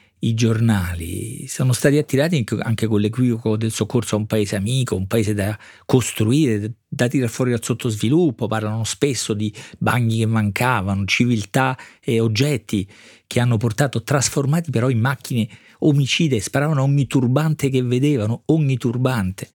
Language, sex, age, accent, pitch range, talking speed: Italian, male, 50-69, native, 110-135 Hz, 145 wpm